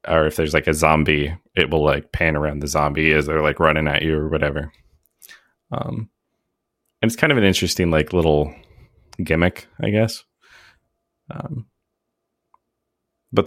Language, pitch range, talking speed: English, 80-100 Hz, 155 wpm